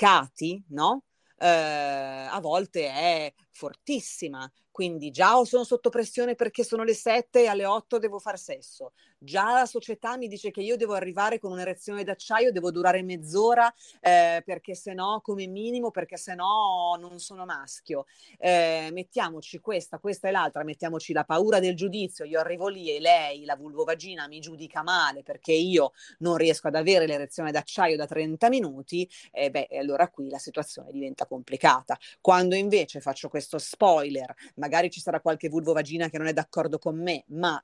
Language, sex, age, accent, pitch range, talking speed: Italian, female, 30-49, native, 160-220 Hz, 170 wpm